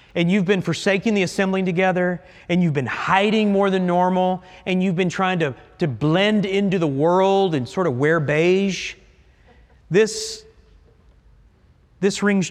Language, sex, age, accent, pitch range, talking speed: English, male, 40-59, American, 150-235 Hz, 155 wpm